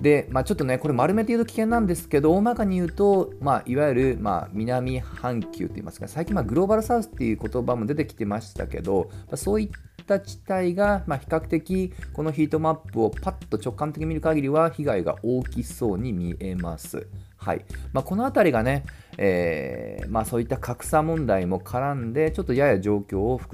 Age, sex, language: 40-59, male, Japanese